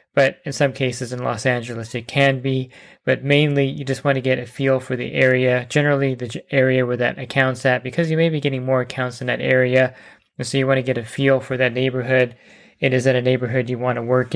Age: 20-39